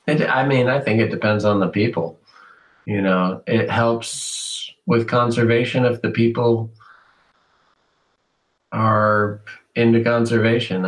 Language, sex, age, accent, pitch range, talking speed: English, male, 40-59, American, 95-115 Hz, 120 wpm